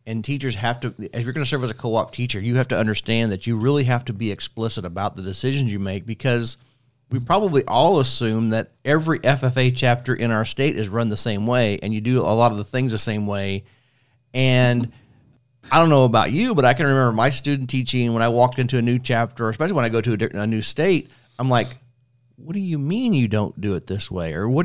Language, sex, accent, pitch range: English, male, American, 110-130 Hz